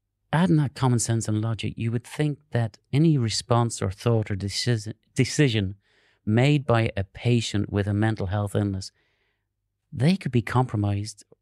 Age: 40-59